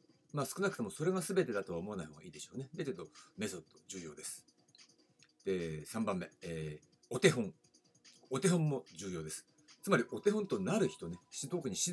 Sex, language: male, Japanese